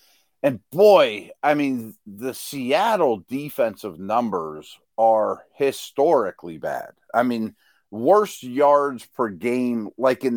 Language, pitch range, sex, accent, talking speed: English, 115-140 Hz, male, American, 110 wpm